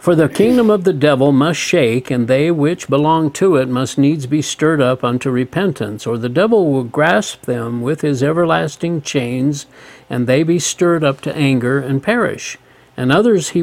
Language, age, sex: English, 50-69, male